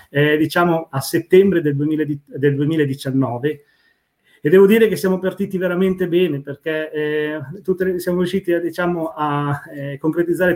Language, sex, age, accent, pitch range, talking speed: Italian, male, 40-59, native, 140-170 Hz, 150 wpm